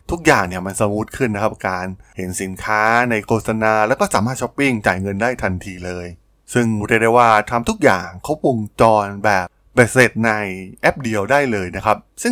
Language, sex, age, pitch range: Thai, male, 20-39, 100-130 Hz